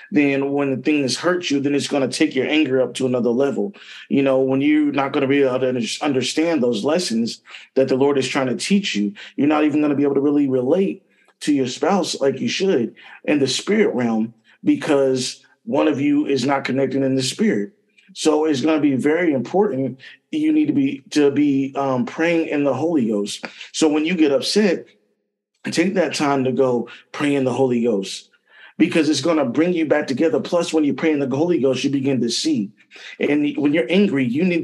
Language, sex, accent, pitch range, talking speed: English, male, American, 130-155 Hz, 220 wpm